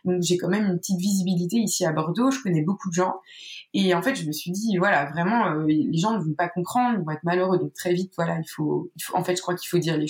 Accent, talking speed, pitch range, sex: French, 305 wpm, 160-185 Hz, female